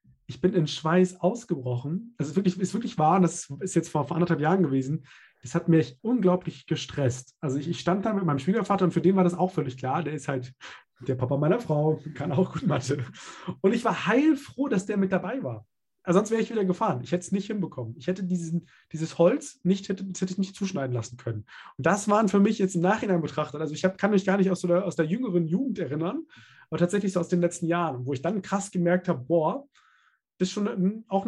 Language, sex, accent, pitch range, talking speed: German, male, German, 150-195 Hz, 245 wpm